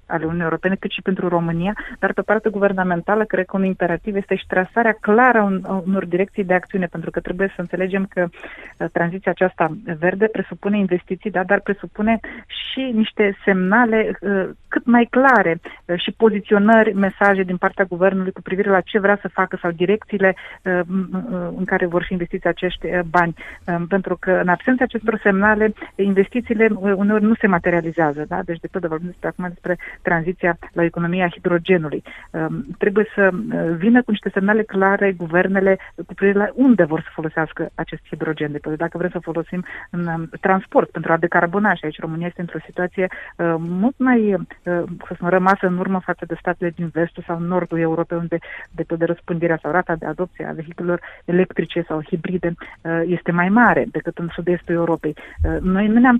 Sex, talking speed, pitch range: female, 185 wpm, 170-200 Hz